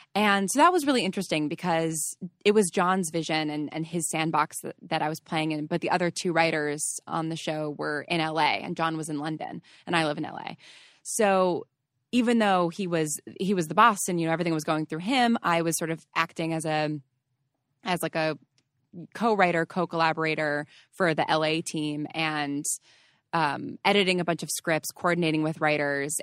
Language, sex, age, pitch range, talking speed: English, female, 20-39, 155-175 Hz, 195 wpm